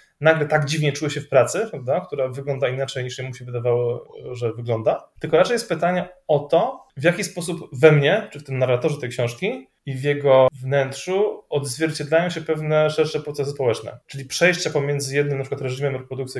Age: 20-39